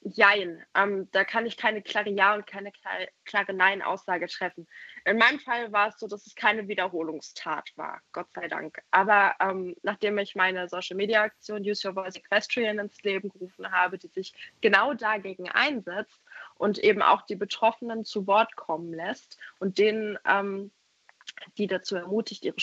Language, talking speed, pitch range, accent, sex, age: German, 165 wpm, 185-210 Hz, German, female, 20-39